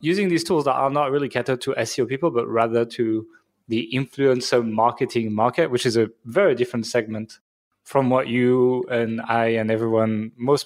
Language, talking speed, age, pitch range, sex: English, 180 wpm, 20-39, 115-145 Hz, male